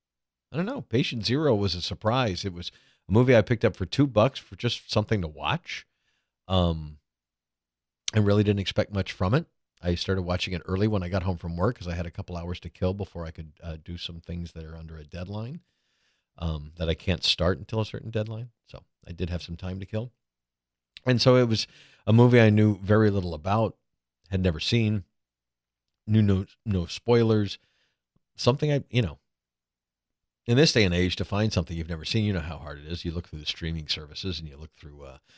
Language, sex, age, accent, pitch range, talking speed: English, male, 50-69, American, 80-110 Hz, 220 wpm